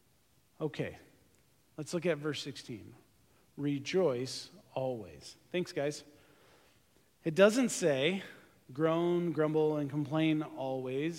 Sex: male